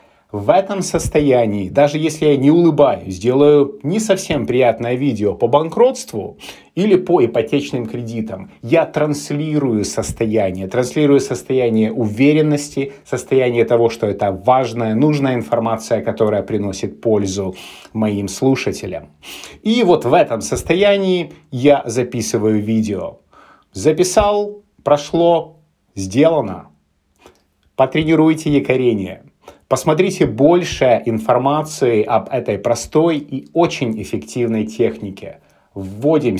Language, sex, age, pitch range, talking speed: Russian, male, 30-49, 110-155 Hz, 100 wpm